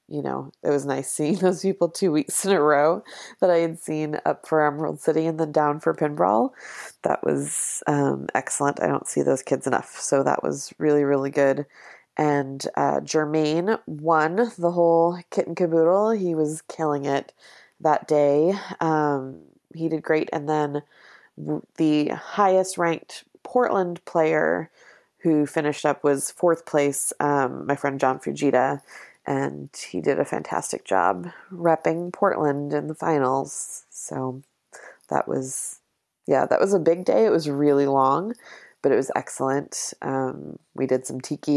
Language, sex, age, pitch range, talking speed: English, female, 20-39, 140-170 Hz, 160 wpm